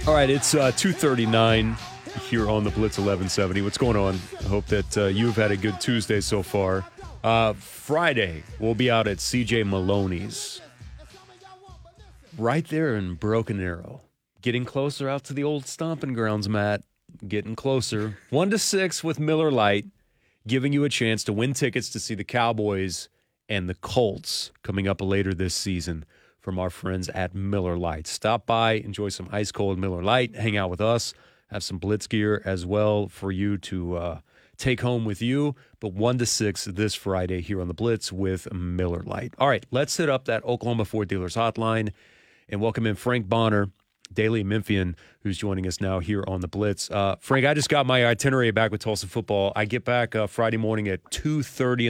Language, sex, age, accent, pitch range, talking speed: English, male, 30-49, American, 100-120 Hz, 185 wpm